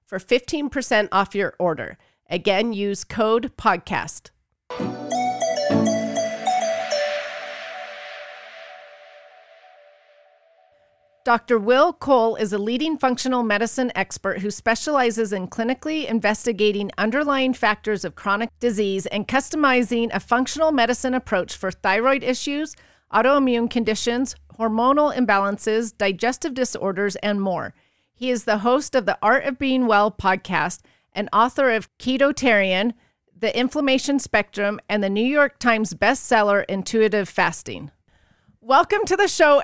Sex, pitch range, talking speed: female, 205-265 Hz, 115 wpm